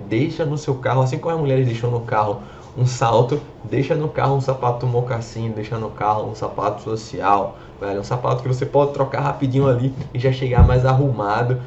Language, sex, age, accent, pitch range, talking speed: Portuguese, male, 20-39, Brazilian, 115-140 Hz, 205 wpm